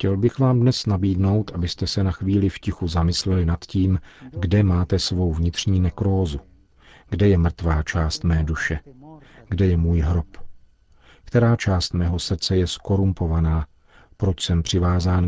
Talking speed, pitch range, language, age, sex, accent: 150 wpm, 85-105 Hz, Czech, 50-69, male, native